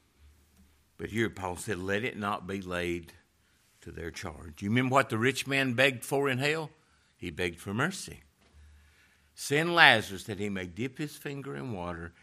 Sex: male